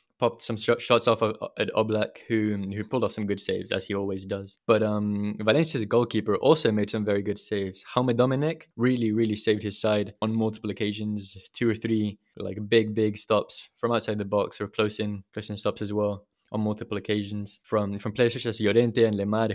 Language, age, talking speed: English, 20-39, 210 wpm